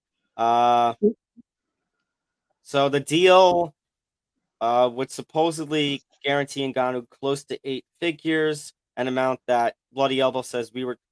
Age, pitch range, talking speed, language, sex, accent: 20-39, 120-140 Hz, 115 wpm, English, male, American